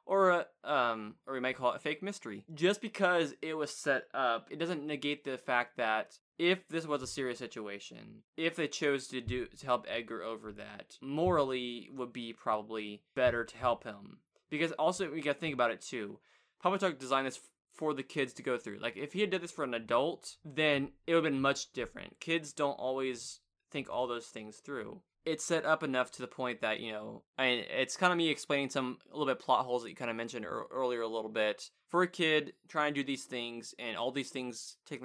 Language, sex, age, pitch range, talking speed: English, male, 20-39, 115-150 Hz, 230 wpm